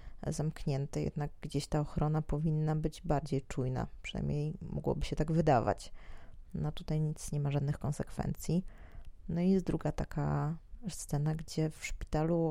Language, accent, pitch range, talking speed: Polish, native, 145-170 Hz, 140 wpm